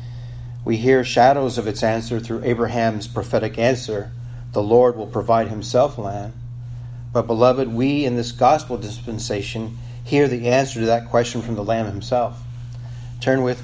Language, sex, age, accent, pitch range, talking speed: English, male, 40-59, American, 115-120 Hz, 155 wpm